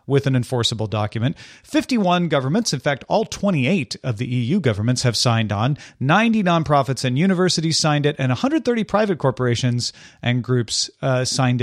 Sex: male